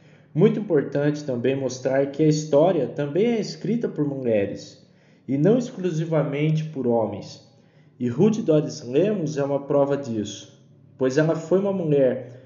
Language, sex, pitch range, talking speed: Portuguese, male, 140-170 Hz, 145 wpm